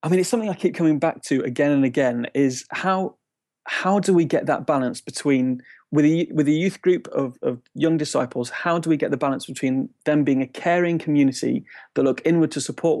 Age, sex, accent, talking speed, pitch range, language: 30-49, male, British, 215 wpm, 130-155 Hz, English